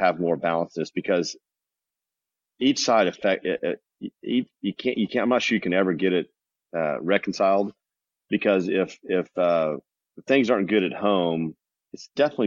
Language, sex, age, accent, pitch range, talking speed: English, male, 40-59, American, 80-95 Hz, 170 wpm